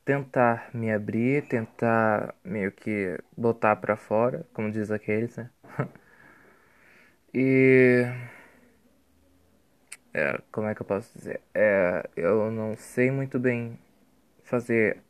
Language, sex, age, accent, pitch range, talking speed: Portuguese, male, 20-39, Brazilian, 110-125 Hz, 110 wpm